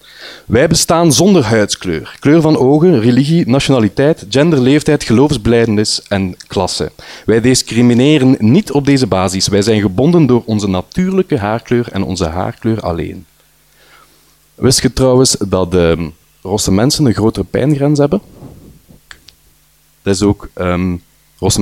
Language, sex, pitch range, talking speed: Dutch, male, 95-120 Hz, 130 wpm